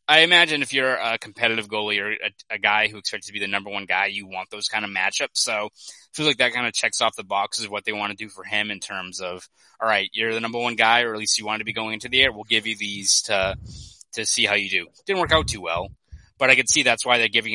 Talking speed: 300 wpm